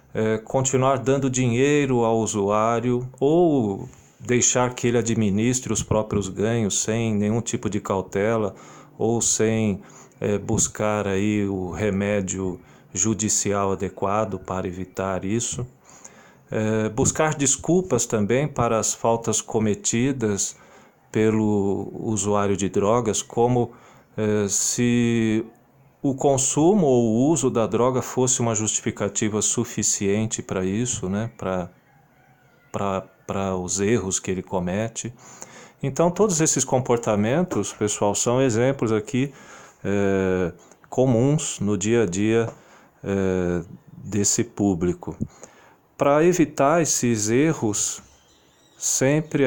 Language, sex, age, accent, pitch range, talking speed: Portuguese, male, 40-59, Brazilian, 100-125 Hz, 105 wpm